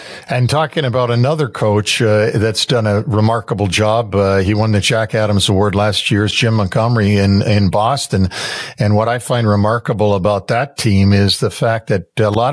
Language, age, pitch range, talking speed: English, 60-79, 105-120 Hz, 185 wpm